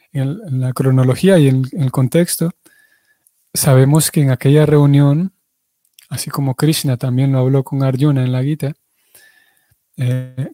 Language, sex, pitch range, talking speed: Spanish, male, 130-155 Hz, 135 wpm